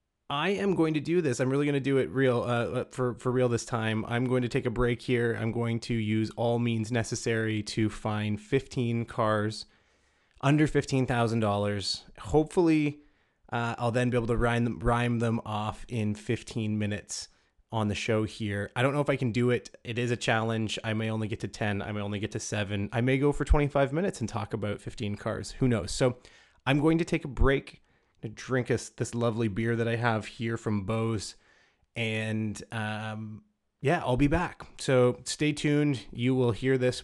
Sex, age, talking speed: male, 20-39, 205 wpm